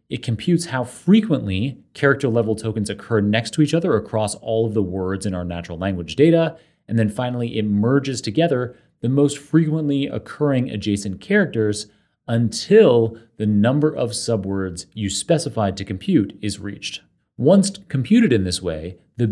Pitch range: 105-145 Hz